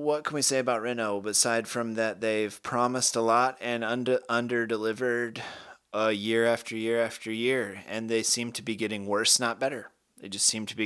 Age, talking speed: 30-49, 210 wpm